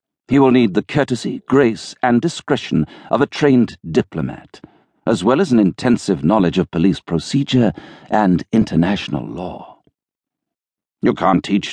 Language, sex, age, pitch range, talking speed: English, male, 60-79, 100-160 Hz, 140 wpm